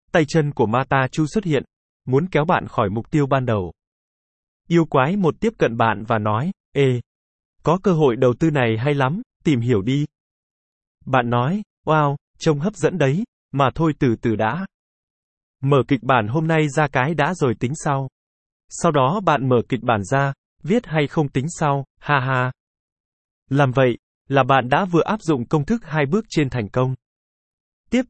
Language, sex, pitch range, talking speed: Vietnamese, male, 125-160 Hz, 190 wpm